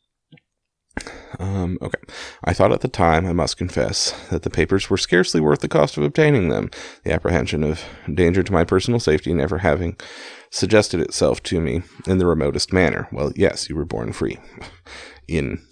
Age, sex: 30-49, male